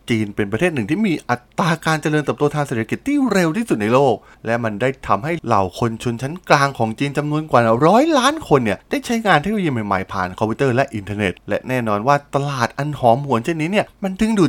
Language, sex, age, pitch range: Thai, male, 20-39, 110-175 Hz